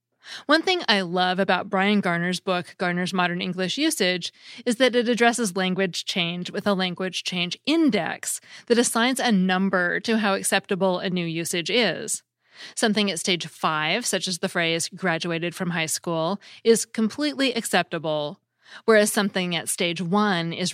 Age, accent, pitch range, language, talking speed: 30-49, American, 175-215 Hz, English, 160 wpm